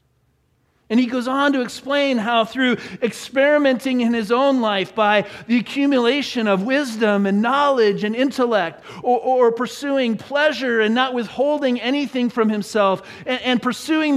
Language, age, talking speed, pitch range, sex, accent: English, 40-59, 150 wpm, 205-270 Hz, male, American